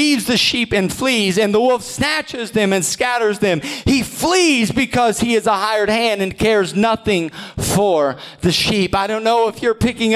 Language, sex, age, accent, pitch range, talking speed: English, male, 40-59, American, 220-285 Hz, 195 wpm